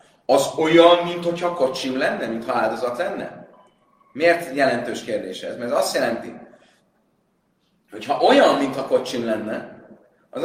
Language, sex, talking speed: Hungarian, male, 130 wpm